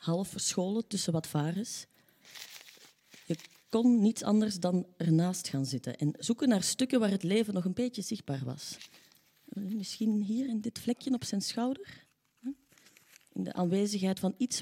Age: 30-49